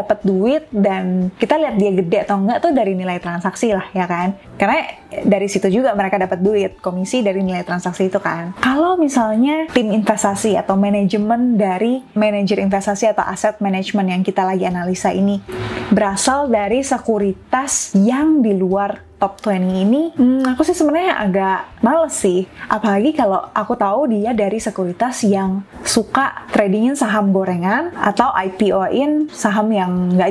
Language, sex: Indonesian, female